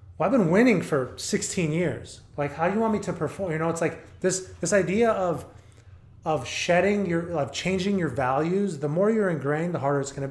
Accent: American